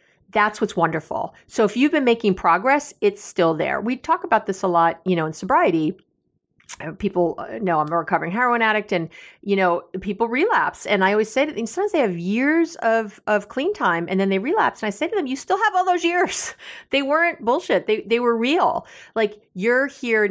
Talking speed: 215 wpm